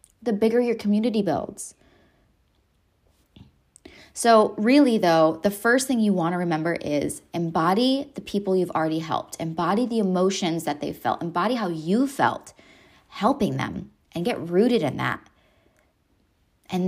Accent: American